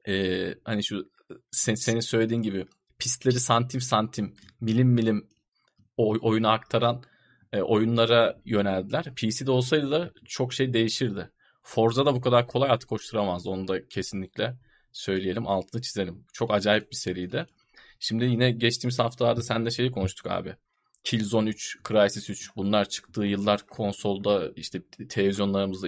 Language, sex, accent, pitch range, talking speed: Turkish, male, native, 100-120 Hz, 135 wpm